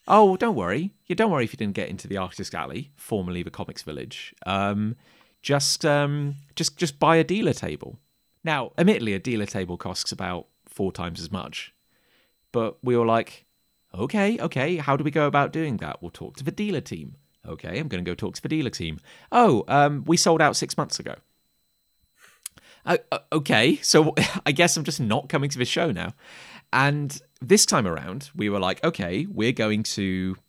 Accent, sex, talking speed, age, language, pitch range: British, male, 200 wpm, 30-49, English, 105-160 Hz